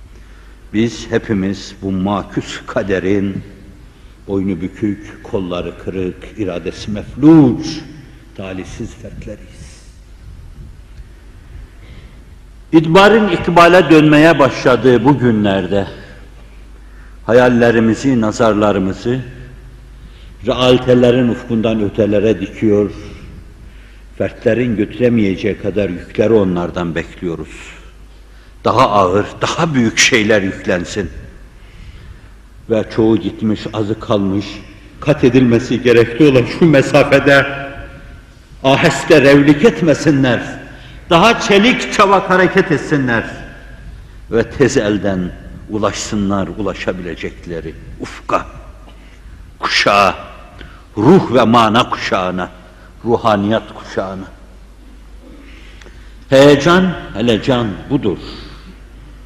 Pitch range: 95-130 Hz